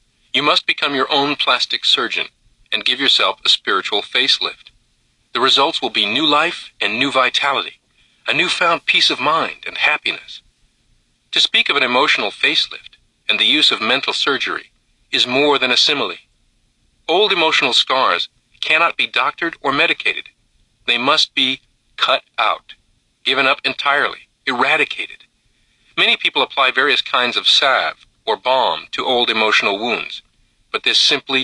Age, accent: 40-59, American